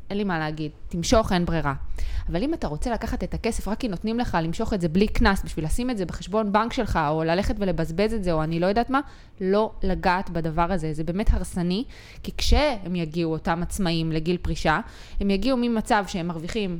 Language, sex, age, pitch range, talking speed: Hebrew, female, 20-39, 170-240 Hz, 210 wpm